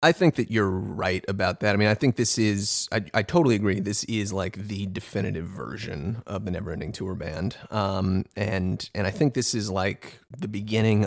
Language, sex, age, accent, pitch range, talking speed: English, male, 30-49, American, 95-110 Hz, 205 wpm